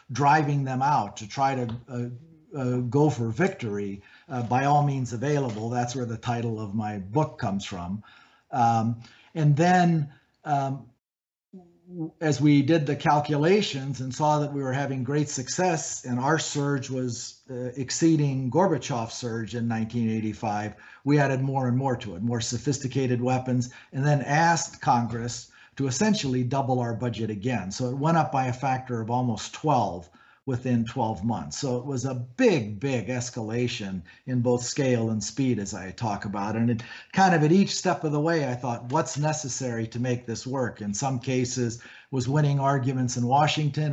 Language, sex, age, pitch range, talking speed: English, male, 50-69, 120-145 Hz, 175 wpm